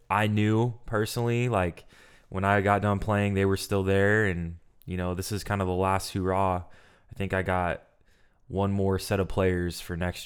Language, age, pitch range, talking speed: English, 20-39, 90-100 Hz, 200 wpm